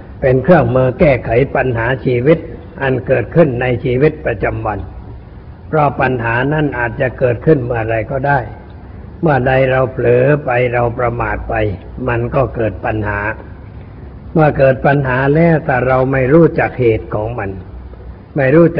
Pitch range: 110-135 Hz